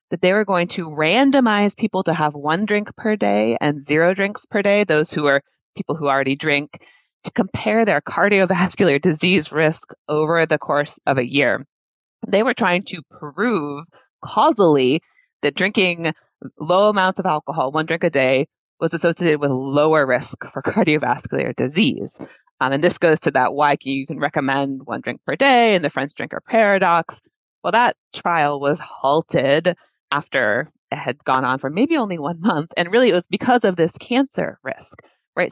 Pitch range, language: 145-210 Hz, English